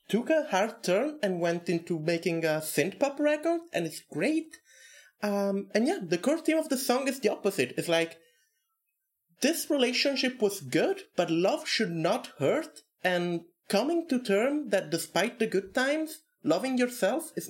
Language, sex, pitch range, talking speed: English, male, 185-265 Hz, 170 wpm